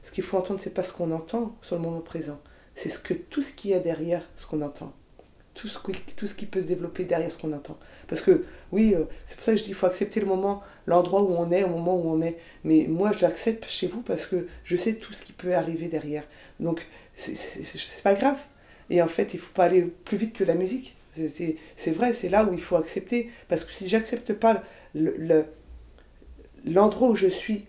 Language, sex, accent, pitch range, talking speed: French, female, French, 170-215 Hz, 245 wpm